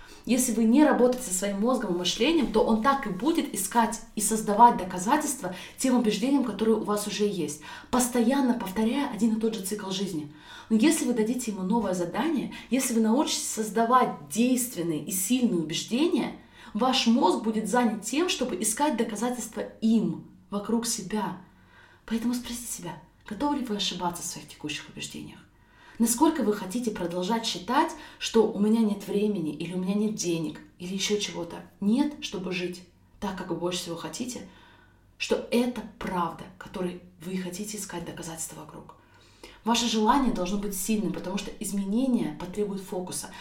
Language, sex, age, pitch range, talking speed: Russian, female, 20-39, 190-245 Hz, 160 wpm